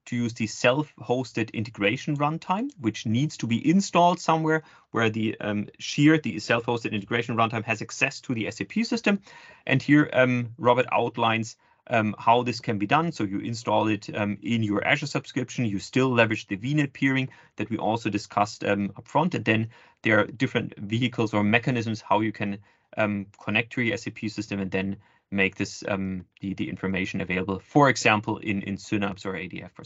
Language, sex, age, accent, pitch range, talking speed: English, male, 30-49, German, 105-135 Hz, 185 wpm